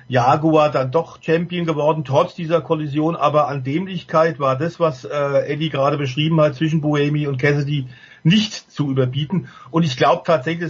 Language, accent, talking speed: German, German, 170 wpm